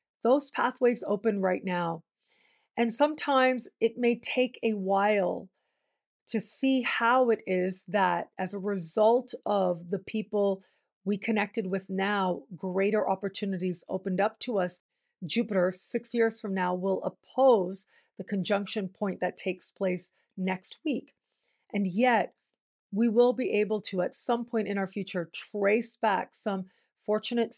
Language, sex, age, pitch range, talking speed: English, female, 40-59, 190-235 Hz, 145 wpm